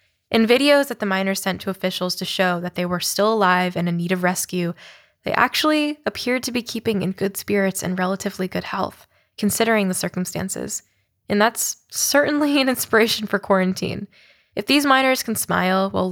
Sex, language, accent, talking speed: female, English, American, 180 wpm